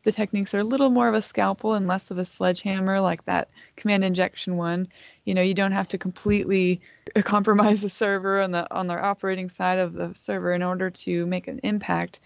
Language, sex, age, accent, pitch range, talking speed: English, female, 20-39, American, 180-210 Hz, 210 wpm